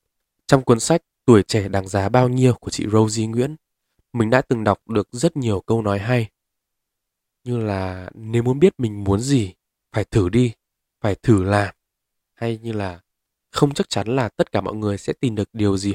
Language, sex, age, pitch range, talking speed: Vietnamese, male, 20-39, 100-130 Hz, 200 wpm